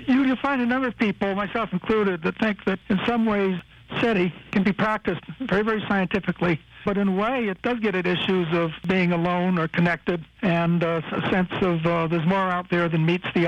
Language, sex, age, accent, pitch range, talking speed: English, male, 60-79, American, 175-205 Hz, 210 wpm